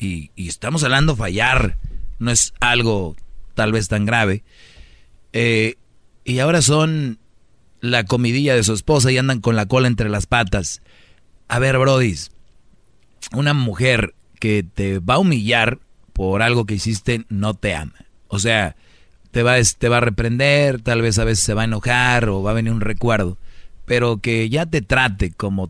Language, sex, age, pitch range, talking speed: Spanish, male, 30-49, 105-130 Hz, 170 wpm